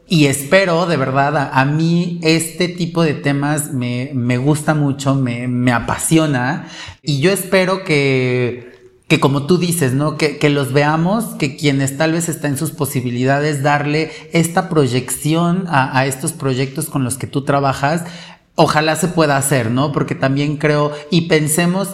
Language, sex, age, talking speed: Spanish, male, 40-59, 165 wpm